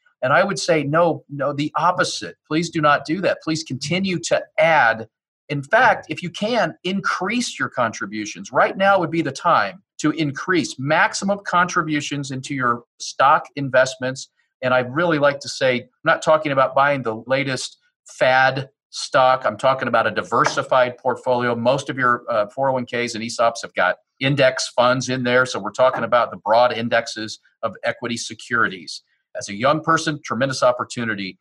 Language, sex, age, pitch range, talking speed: English, male, 40-59, 120-160 Hz, 170 wpm